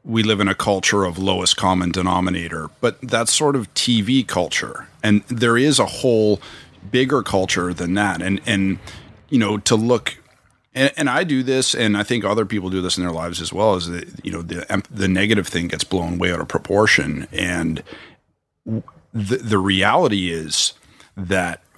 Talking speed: 185 wpm